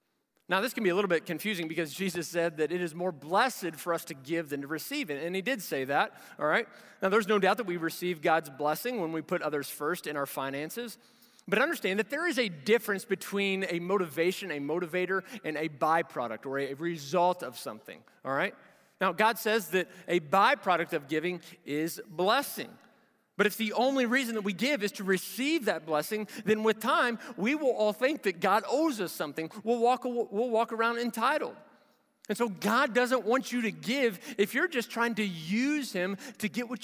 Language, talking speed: English, 210 wpm